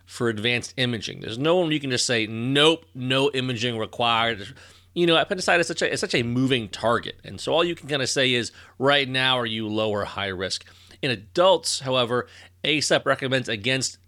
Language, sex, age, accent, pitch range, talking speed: English, male, 30-49, American, 110-150 Hz, 195 wpm